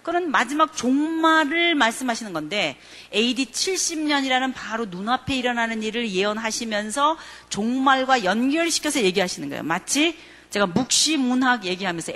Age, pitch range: 40-59, 185-275 Hz